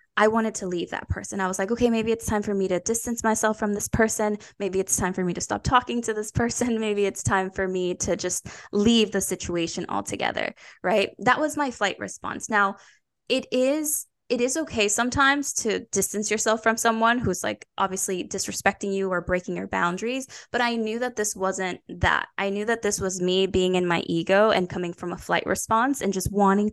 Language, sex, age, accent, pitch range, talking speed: English, female, 10-29, American, 190-225 Hz, 215 wpm